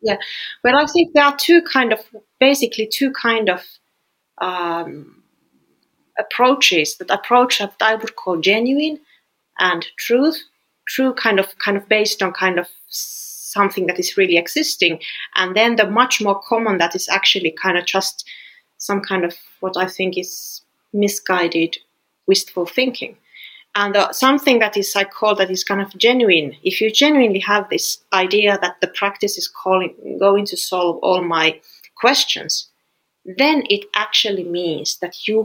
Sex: female